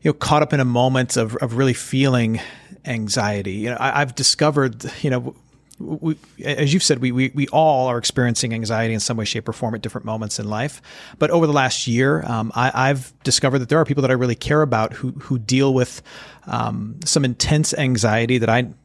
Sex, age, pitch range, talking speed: male, 40-59, 120-150 Hz, 220 wpm